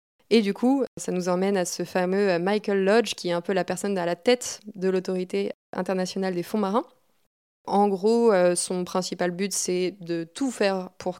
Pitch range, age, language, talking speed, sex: 180-200 Hz, 20-39, French, 195 wpm, female